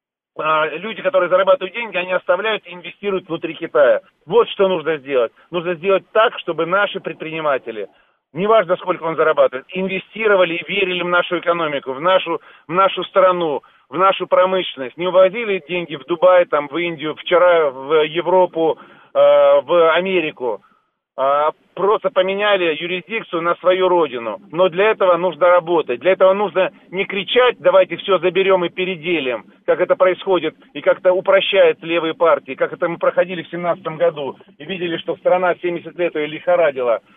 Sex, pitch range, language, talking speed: male, 170-195 Hz, Russian, 155 wpm